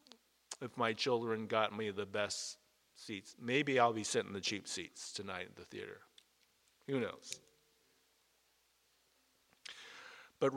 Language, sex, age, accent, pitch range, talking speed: English, male, 50-69, American, 115-185 Hz, 130 wpm